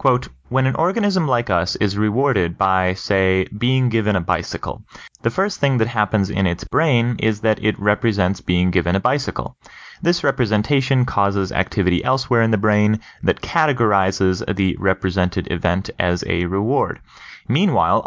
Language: English